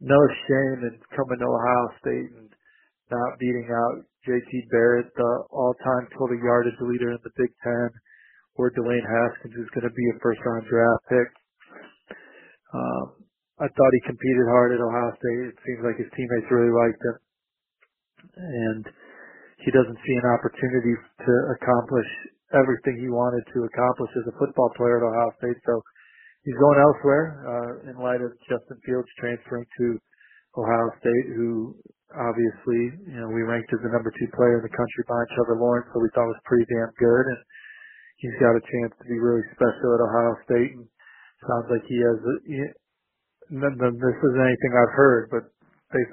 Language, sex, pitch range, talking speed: English, male, 120-130 Hz, 180 wpm